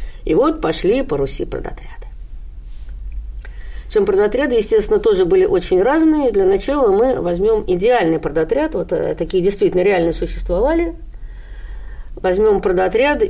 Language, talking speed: Russian, 110 wpm